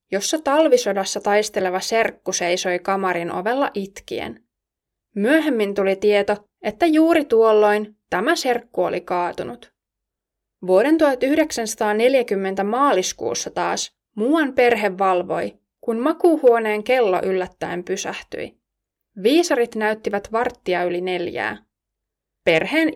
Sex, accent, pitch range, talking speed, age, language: female, native, 190-250 Hz, 95 wpm, 20-39, Finnish